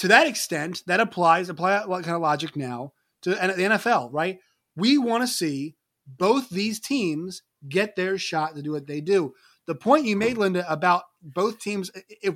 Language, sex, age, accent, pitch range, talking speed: English, male, 30-49, American, 160-205 Hz, 185 wpm